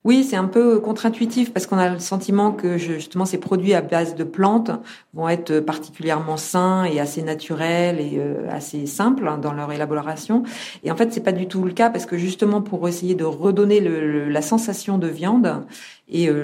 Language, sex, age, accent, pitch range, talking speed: French, female, 50-69, French, 155-195 Hz, 195 wpm